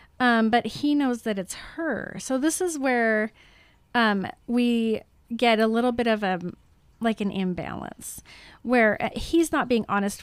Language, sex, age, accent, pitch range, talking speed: English, female, 30-49, American, 195-250 Hz, 155 wpm